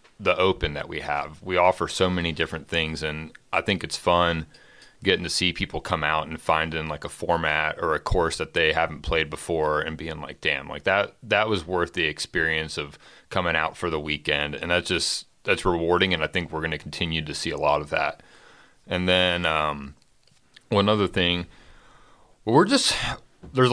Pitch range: 80-95 Hz